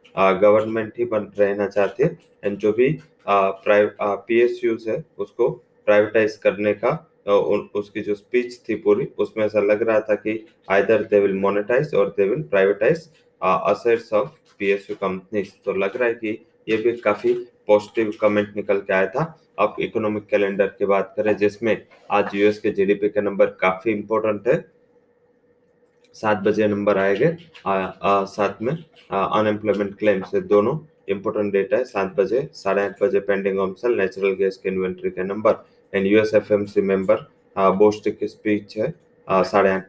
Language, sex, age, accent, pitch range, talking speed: English, male, 20-39, Indian, 100-110 Hz, 140 wpm